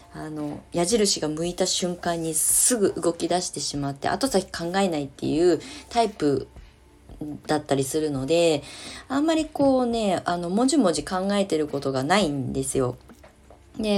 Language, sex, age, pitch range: Japanese, female, 20-39, 155-215 Hz